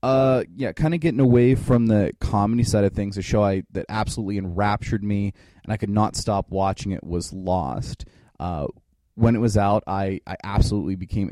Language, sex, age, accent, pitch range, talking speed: English, male, 20-39, American, 95-110 Hz, 195 wpm